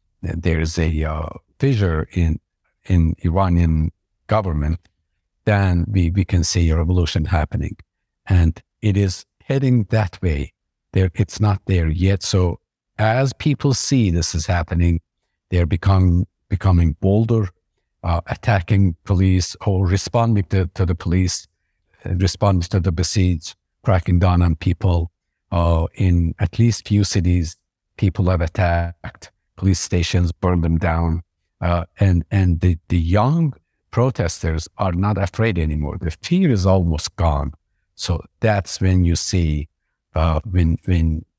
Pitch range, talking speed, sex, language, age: 85-100 Hz, 135 wpm, male, English, 50-69